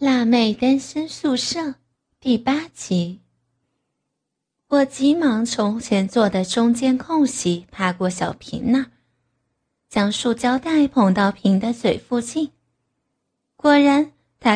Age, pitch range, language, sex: 20-39, 200-280 Hz, Chinese, female